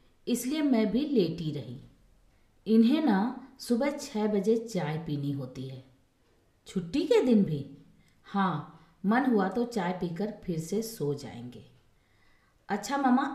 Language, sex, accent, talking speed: Hindi, female, native, 135 wpm